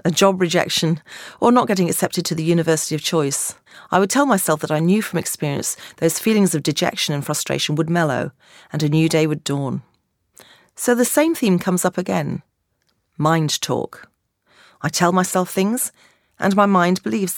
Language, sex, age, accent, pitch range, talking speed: English, female, 40-59, British, 150-185 Hz, 180 wpm